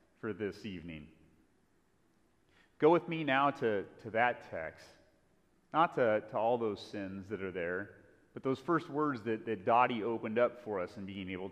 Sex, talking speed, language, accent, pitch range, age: male, 175 wpm, English, American, 110-165 Hz, 30-49